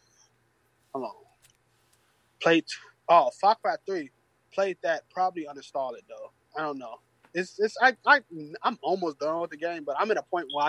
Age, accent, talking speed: 20-39, American, 185 wpm